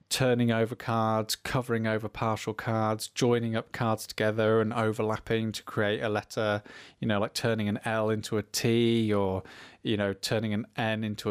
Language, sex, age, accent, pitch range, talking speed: English, male, 20-39, British, 110-135 Hz, 175 wpm